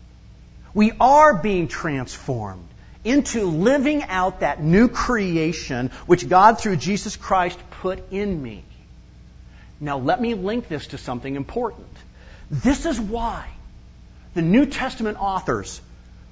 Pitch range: 125-185 Hz